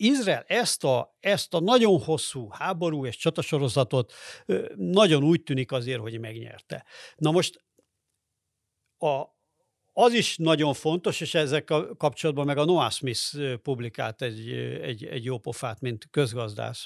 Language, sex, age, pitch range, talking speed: Hungarian, male, 50-69, 120-155 Hz, 135 wpm